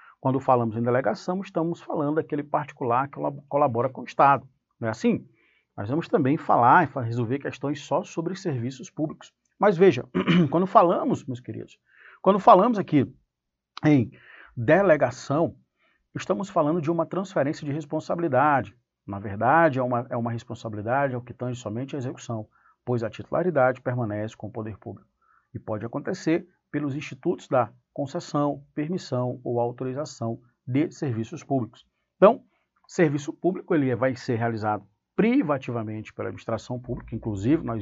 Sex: male